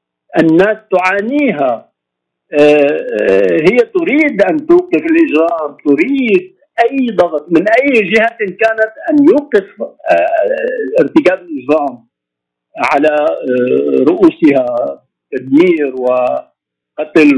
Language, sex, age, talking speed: Arabic, male, 50-69, 80 wpm